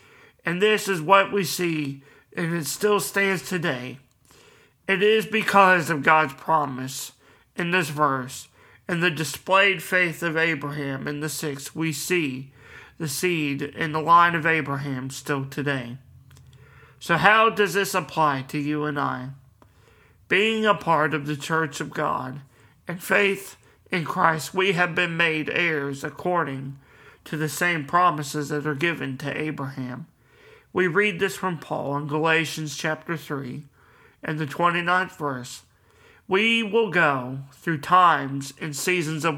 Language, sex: English, male